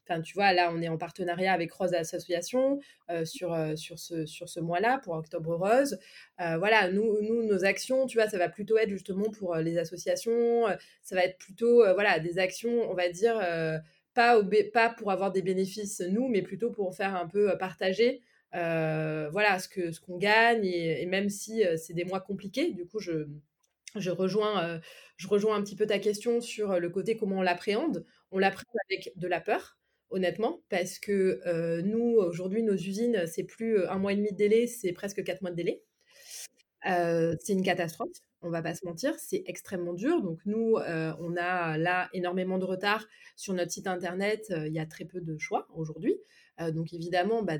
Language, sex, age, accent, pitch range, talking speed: French, female, 20-39, French, 170-210 Hz, 215 wpm